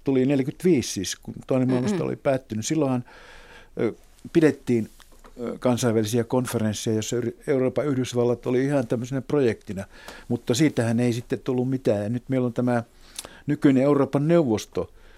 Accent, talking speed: native, 135 wpm